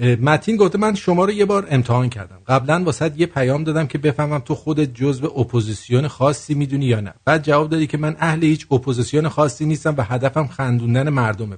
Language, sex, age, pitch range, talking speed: English, male, 50-69, 125-170 Hz, 195 wpm